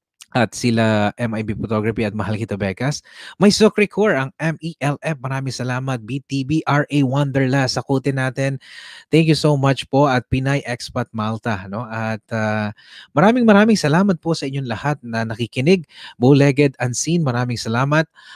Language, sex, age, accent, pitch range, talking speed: Filipino, male, 20-39, native, 110-140 Hz, 140 wpm